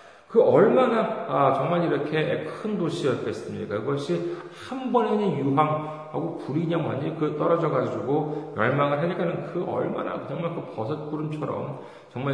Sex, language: male, Korean